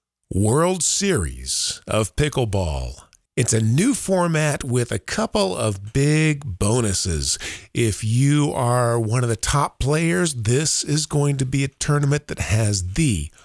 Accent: American